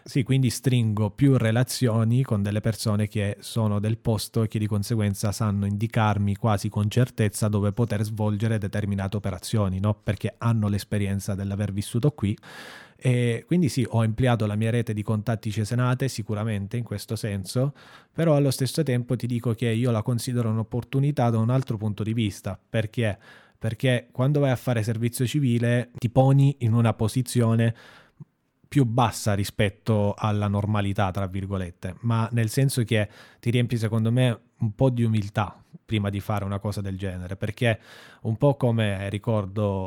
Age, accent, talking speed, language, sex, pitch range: 20-39, native, 165 wpm, Italian, male, 105-120 Hz